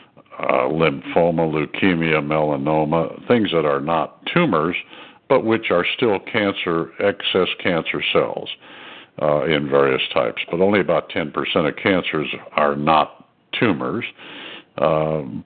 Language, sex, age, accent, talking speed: English, male, 60-79, American, 120 wpm